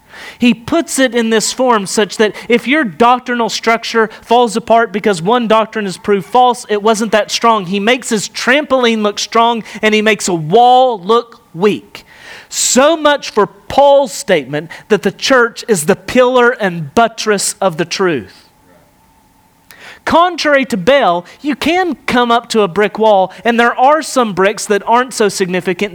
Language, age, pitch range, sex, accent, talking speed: English, 40-59, 205-260 Hz, male, American, 170 wpm